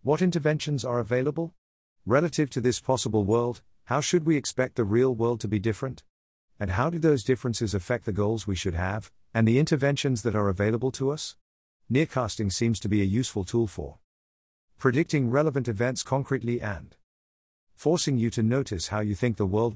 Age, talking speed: 50-69, 180 wpm